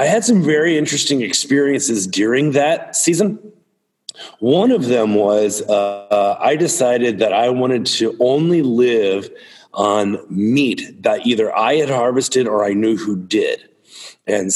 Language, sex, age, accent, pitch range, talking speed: English, male, 40-59, American, 105-140 Hz, 150 wpm